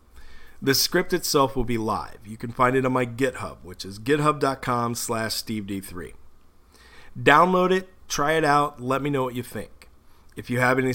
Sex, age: male, 40-59